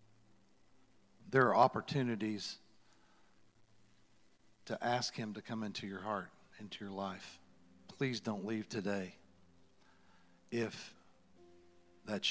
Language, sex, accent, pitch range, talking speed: English, male, American, 90-125 Hz, 95 wpm